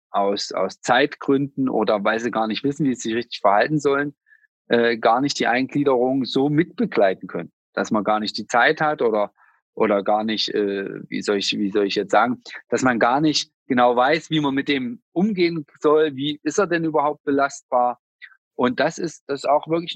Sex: male